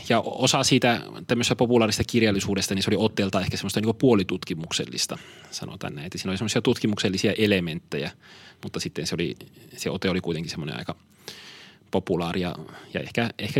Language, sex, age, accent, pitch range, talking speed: Finnish, male, 30-49, native, 95-115 Hz, 155 wpm